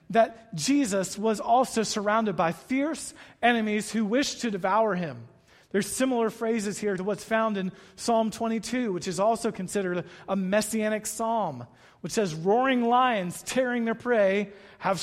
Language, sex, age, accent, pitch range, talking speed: English, male, 40-59, American, 190-250 Hz, 150 wpm